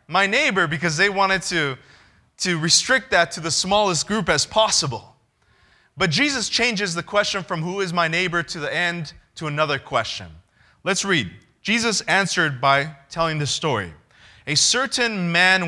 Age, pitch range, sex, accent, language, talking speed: 30-49, 140-185 Hz, male, American, English, 160 wpm